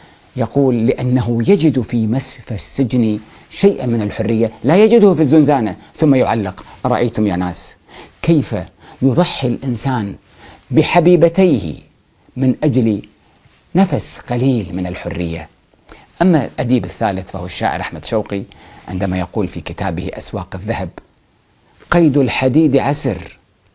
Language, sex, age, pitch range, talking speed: Arabic, male, 50-69, 115-170 Hz, 110 wpm